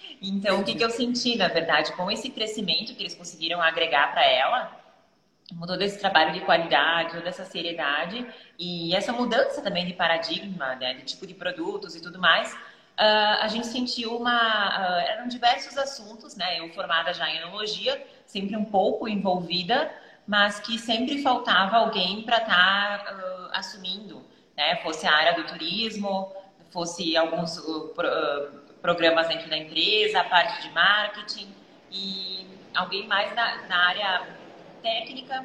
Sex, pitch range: female, 175-220 Hz